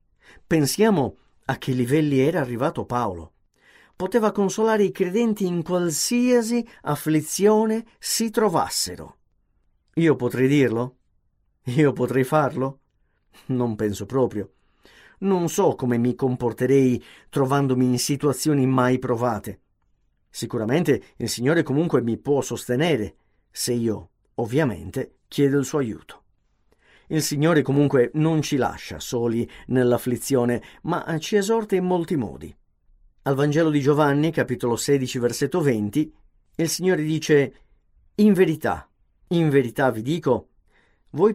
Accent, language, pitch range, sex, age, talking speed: native, Italian, 115-160 Hz, male, 50-69, 120 wpm